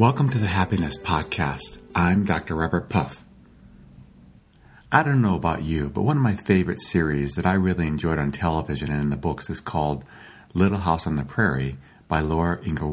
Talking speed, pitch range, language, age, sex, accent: 185 wpm, 75-100 Hz, English, 50-69, male, American